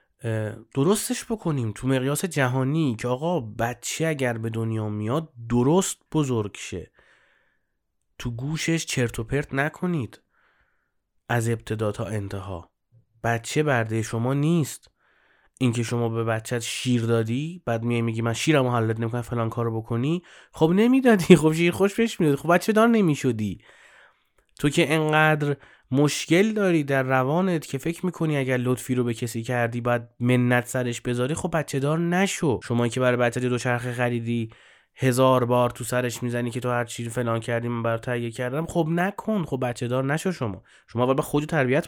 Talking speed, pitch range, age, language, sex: 160 wpm, 120-160 Hz, 30-49, Persian, male